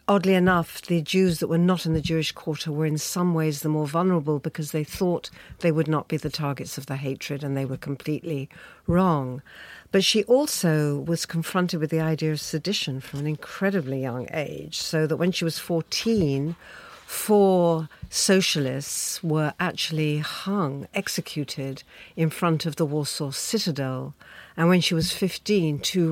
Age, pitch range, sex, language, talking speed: 60-79, 145-180 Hz, female, English, 170 wpm